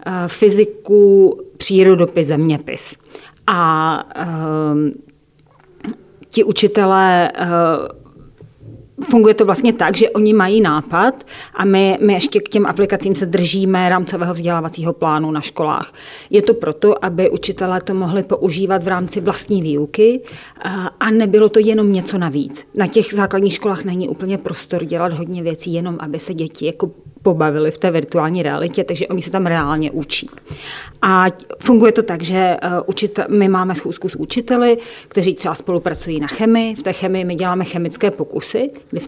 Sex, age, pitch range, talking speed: female, 30-49, 160-200 Hz, 150 wpm